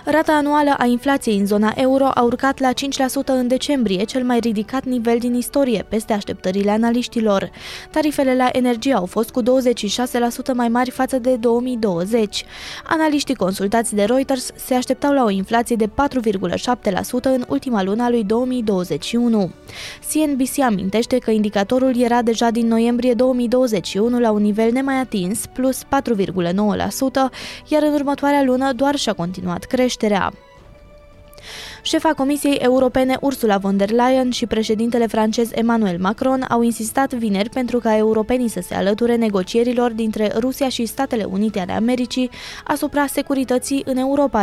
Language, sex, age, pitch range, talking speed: Romanian, female, 20-39, 220-265 Hz, 145 wpm